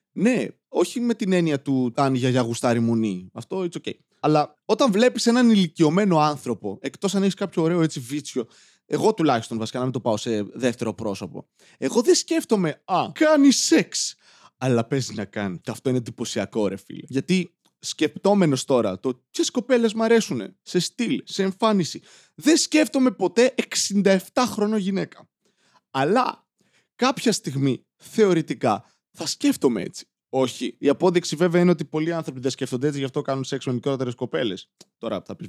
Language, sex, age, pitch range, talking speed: Greek, male, 20-39, 125-195 Hz, 160 wpm